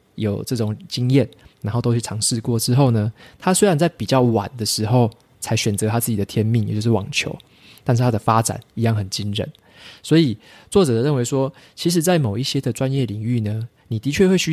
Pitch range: 105-130 Hz